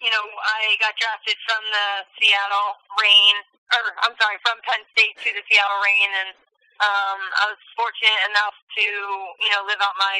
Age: 10-29